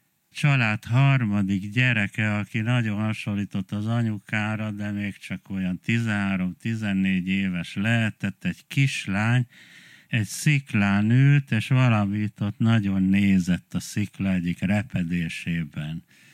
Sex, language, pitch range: male, Hungarian, 100-130 Hz